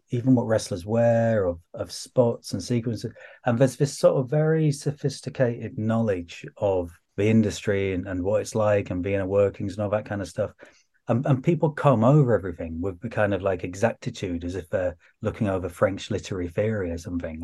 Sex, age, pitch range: male, 30-49, 100-130 Hz